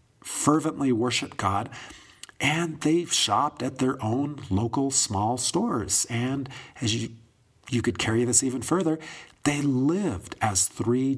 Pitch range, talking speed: 110-150 Hz, 135 wpm